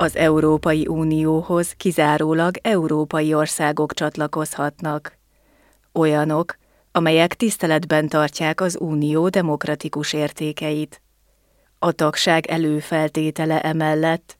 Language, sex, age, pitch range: Hungarian, female, 30-49, 155-170 Hz